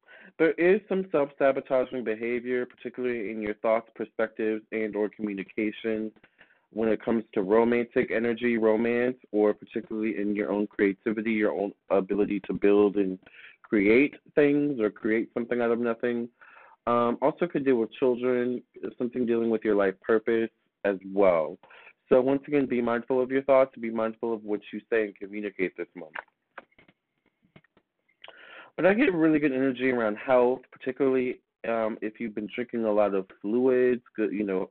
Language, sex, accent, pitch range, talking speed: English, male, American, 105-125 Hz, 160 wpm